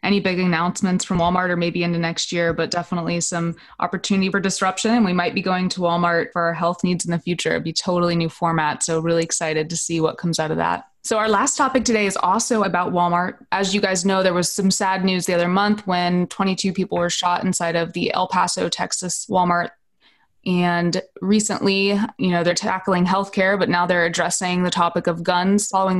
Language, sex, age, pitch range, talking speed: English, female, 20-39, 175-200 Hz, 215 wpm